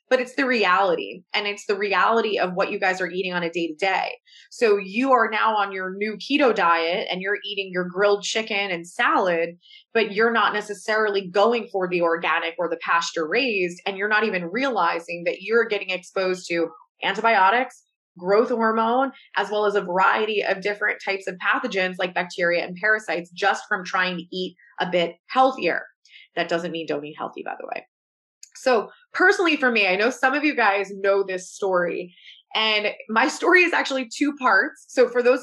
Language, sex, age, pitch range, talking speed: English, female, 20-39, 180-235 Hz, 195 wpm